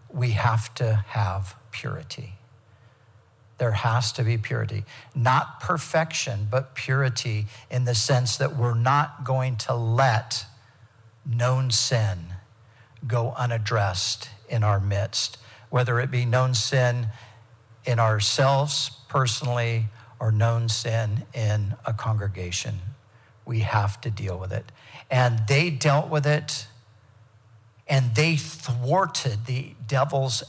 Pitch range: 110-130 Hz